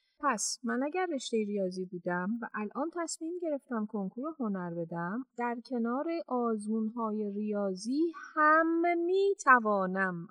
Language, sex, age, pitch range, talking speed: Persian, female, 40-59, 210-280 Hz, 115 wpm